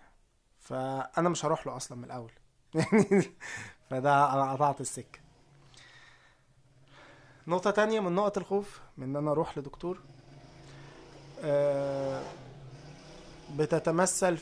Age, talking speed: 20-39, 90 wpm